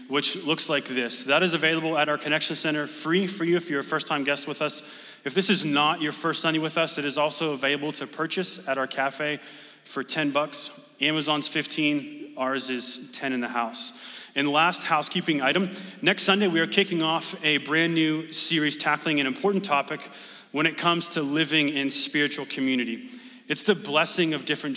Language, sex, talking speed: English, male, 195 wpm